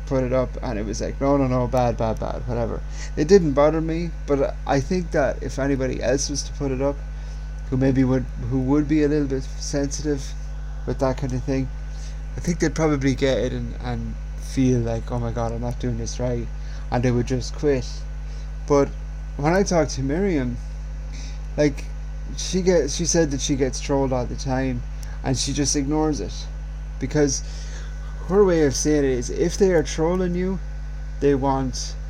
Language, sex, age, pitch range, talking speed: English, male, 30-49, 105-145 Hz, 195 wpm